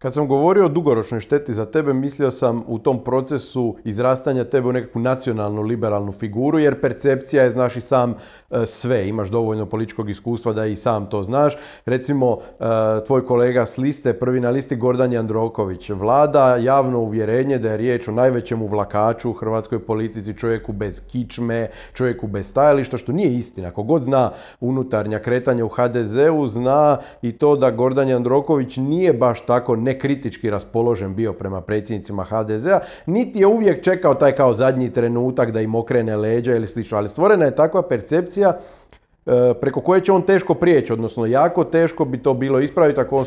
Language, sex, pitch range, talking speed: Croatian, male, 115-140 Hz, 170 wpm